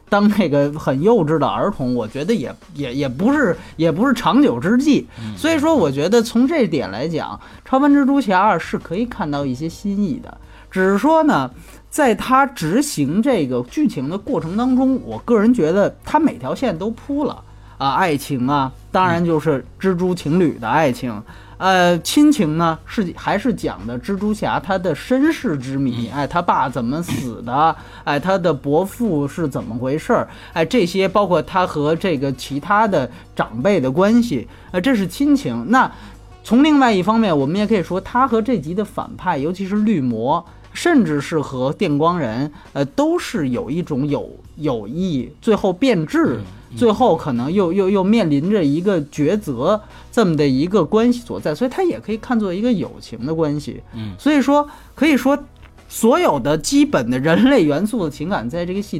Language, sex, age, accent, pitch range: Chinese, male, 20-39, native, 150-240 Hz